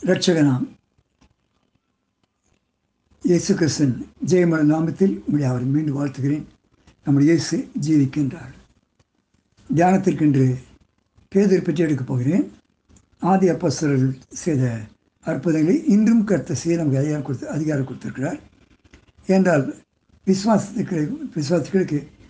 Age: 60-79